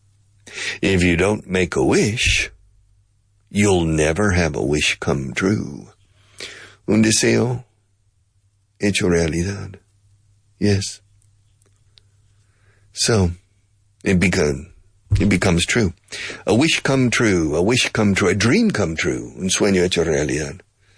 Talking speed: 110 wpm